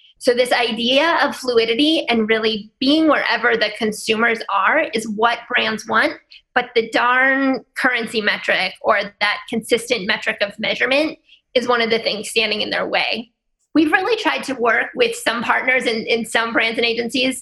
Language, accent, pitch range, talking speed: English, American, 225-275 Hz, 170 wpm